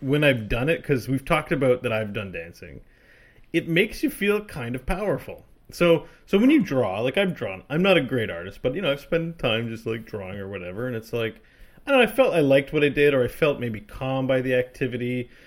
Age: 30-49